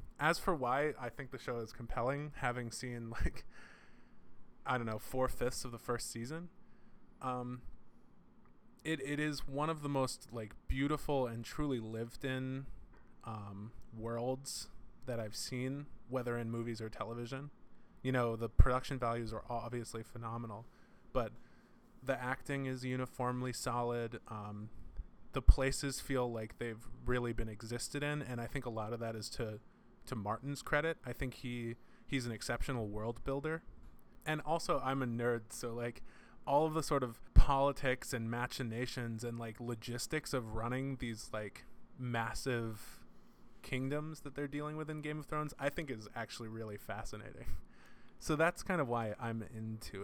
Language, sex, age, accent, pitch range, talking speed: English, male, 20-39, American, 115-135 Hz, 160 wpm